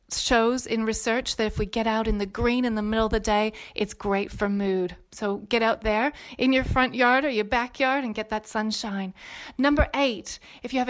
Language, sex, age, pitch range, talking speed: English, female, 30-49, 215-245 Hz, 225 wpm